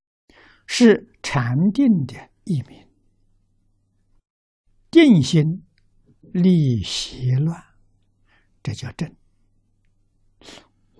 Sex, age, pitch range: male, 60-79, 95-135 Hz